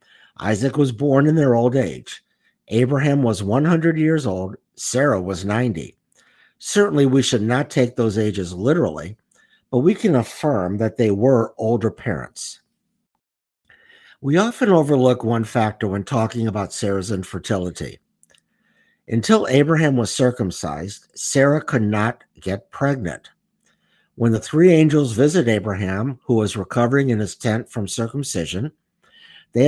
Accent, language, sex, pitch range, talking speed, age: American, English, male, 100-140 Hz, 135 wpm, 60-79